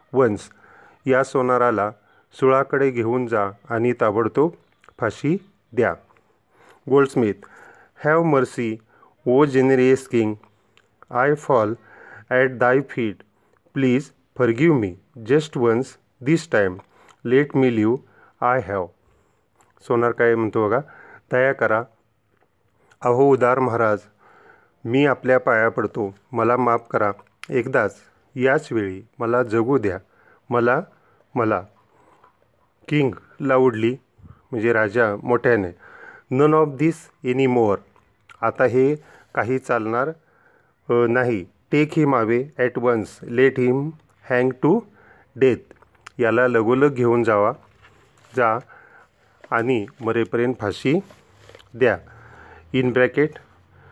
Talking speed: 95 wpm